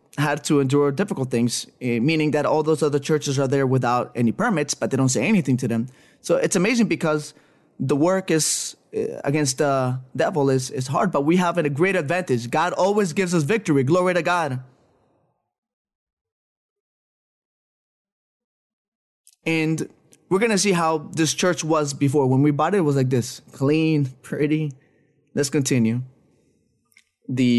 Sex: male